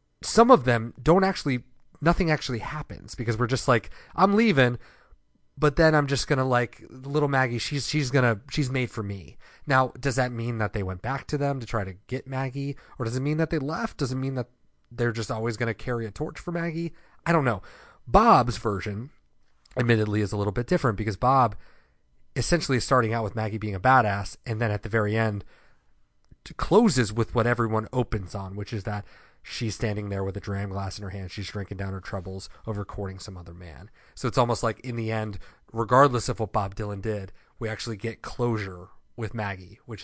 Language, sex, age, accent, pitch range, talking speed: English, male, 30-49, American, 105-135 Hz, 215 wpm